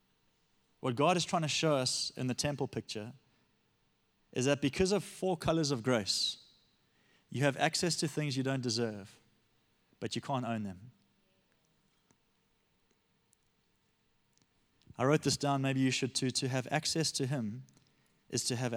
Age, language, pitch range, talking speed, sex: 30-49, English, 120-140 Hz, 155 wpm, male